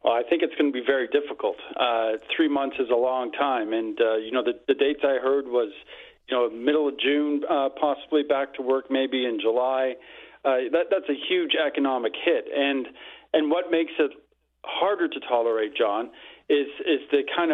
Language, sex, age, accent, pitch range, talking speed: English, male, 40-59, American, 130-180 Hz, 200 wpm